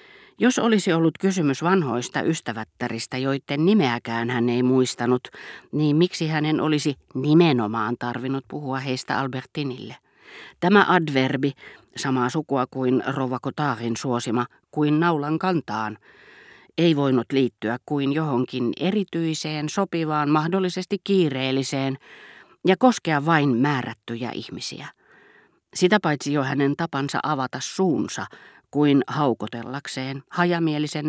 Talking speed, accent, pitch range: 105 wpm, native, 125-165 Hz